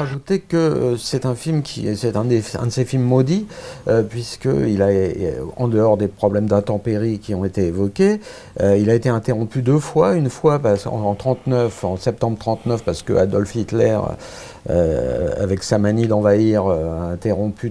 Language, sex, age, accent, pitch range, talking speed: French, male, 50-69, French, 110-160 Hz, 185 wpm